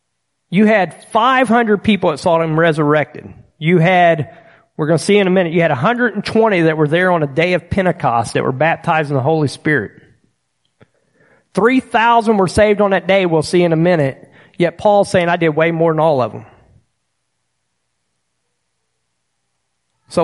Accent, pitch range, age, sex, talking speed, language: American, 145-190 Hz, 40-59, male, 180 wpm, English